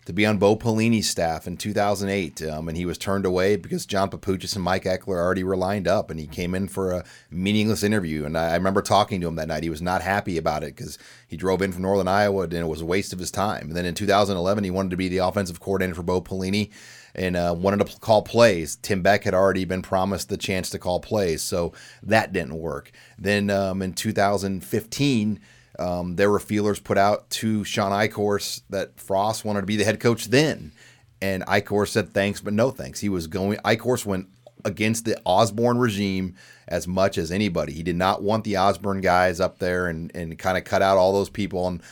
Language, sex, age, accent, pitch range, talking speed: English, male, 30-49, American, 90-105 Hz, 225 wpm